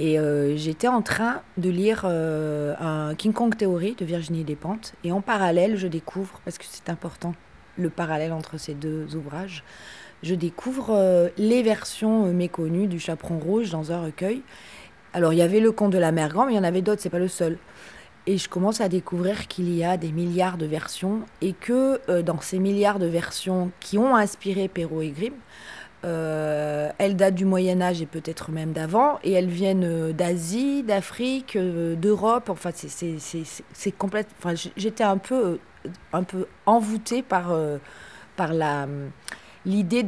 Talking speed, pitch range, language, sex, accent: 185 wpm, 165-205 Hz, French, female, French